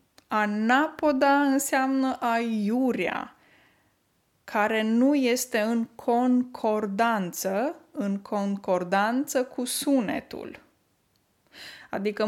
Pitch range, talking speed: 195-250 Hz, 65 wpm